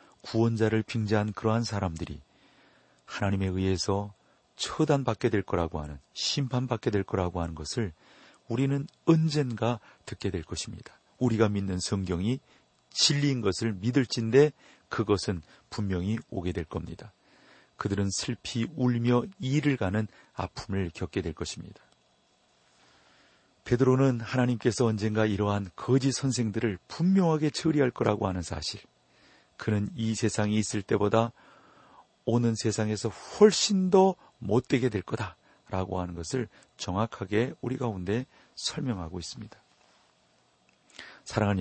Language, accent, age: Korean, native, 40-59